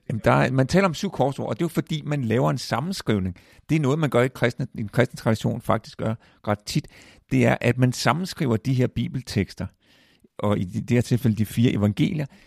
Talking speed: 220 wpm